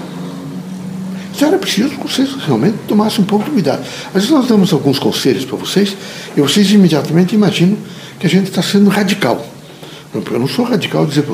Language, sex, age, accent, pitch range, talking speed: Portuguese, male, 60-79, Brazilian, 155-210 Hz, 180 wpm